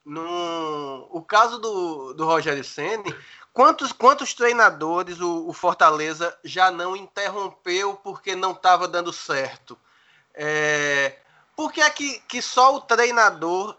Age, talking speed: 20-39, 125 wpm